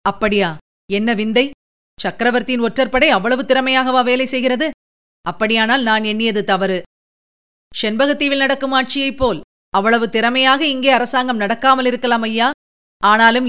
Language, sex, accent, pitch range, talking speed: Tamil, female, native, 215-250 Hz, 110 wpm